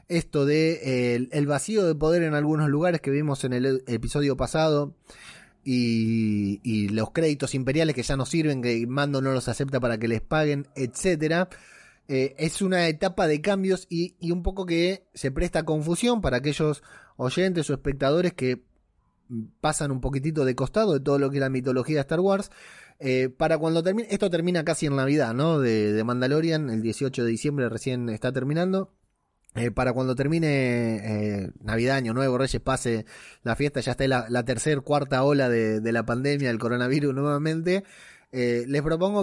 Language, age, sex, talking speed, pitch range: Spanish, 20-39, male, 180 wpm, 125-165 Hz